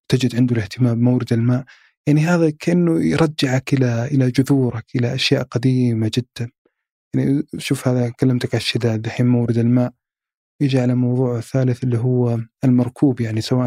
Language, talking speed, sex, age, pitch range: Arabic, 145 wpm, male, 20-39, 120-140 Hz